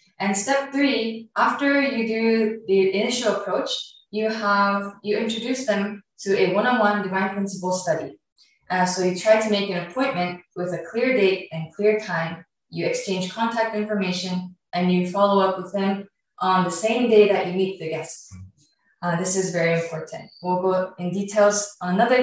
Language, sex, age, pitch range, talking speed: English, female, 20-39, 180-215 Hz, 175 wpm